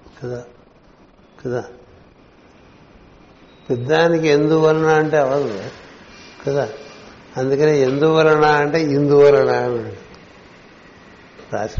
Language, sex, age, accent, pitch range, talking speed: Telugu, male, 60-79, native, 125-145 Hz, 60 wpm